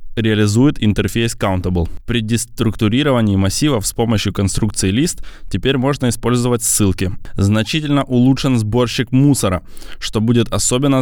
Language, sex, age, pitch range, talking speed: Russian, male, 20-39, 105-135 Hz, 115 wpm